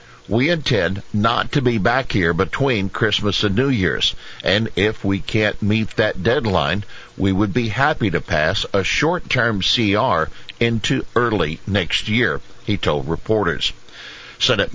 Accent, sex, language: American, male, English